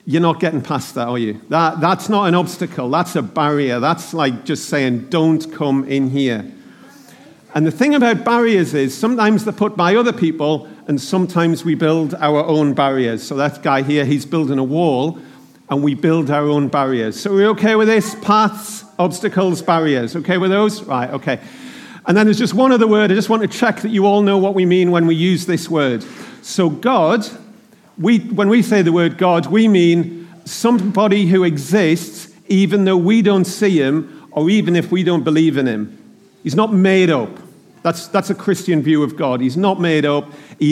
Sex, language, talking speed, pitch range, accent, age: male, English, 205 wpm, 150-200 Hz, British, 50-69